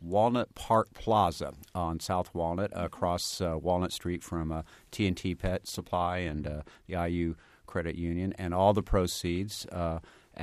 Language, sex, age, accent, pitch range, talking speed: English, male, 50-69, American, 80-100 Hz, 155 wpm